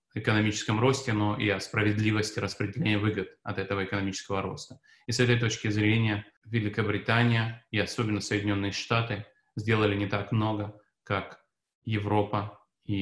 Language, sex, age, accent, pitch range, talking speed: Russian, male, 30-49, native, 100-120 Hz, 135 wpm